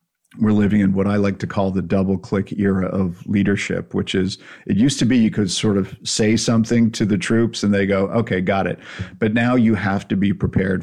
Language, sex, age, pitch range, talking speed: English, male, 50-69, 95-110 Hz, 235 wpm